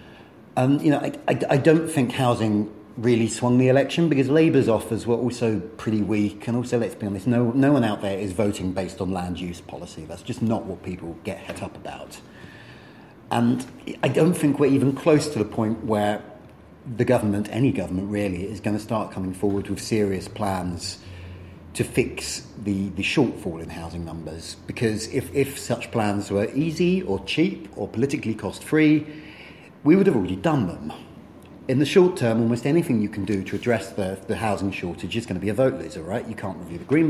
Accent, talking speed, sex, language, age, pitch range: British, 205 wpm, male, English, 30-49, 100-125 Hz